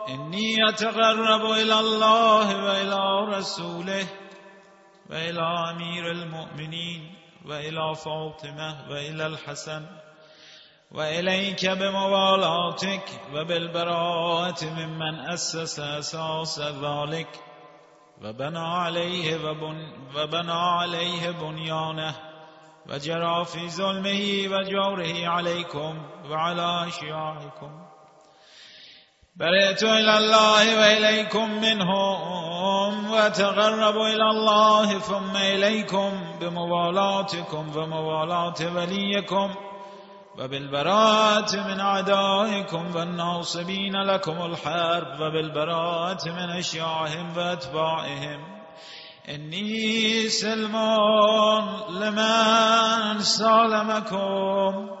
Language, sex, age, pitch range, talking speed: Persian, male, 30-49, 160-200 Hz, 65 wpm